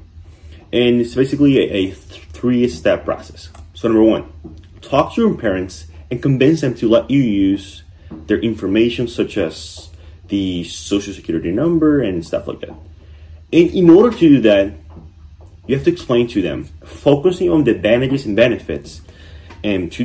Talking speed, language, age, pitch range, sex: 160 wpm, English, 30-49, 80-125 Hz, male